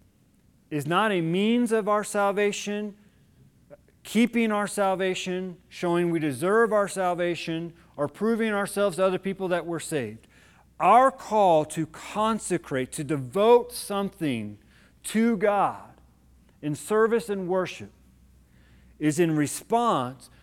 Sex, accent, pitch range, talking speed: male, American, 155-215 Hz, 120 wpm